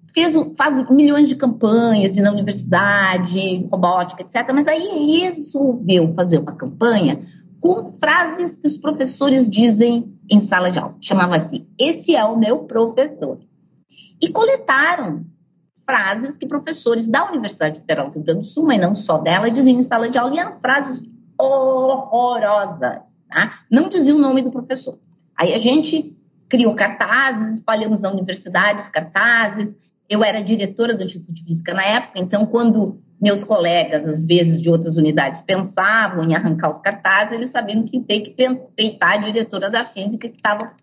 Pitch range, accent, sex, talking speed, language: 190-260 Hz, Brazilian, female, 165 wpm, Portuguese